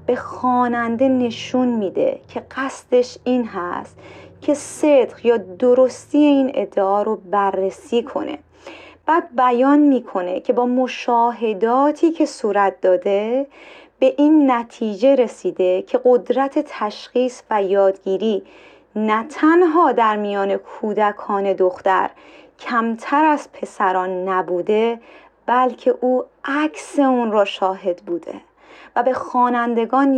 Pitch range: 210-270 Hz